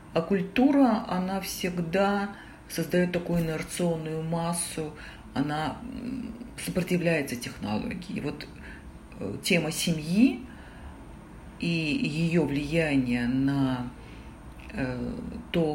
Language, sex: Russian, female